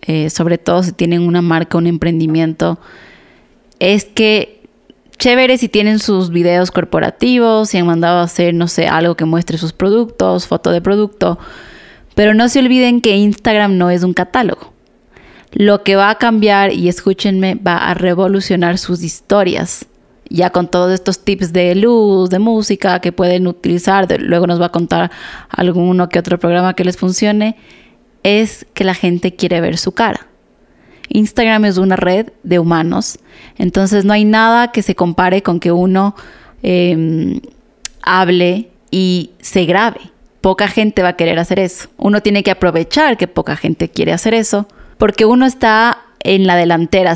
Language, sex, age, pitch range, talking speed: Spanish, female, 20-39, 175-210 Hz, 165 wpm